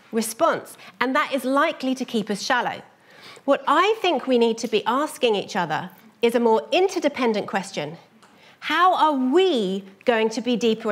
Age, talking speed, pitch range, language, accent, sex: 40-59, 170 wpm, 220-315 Hz, English, British, female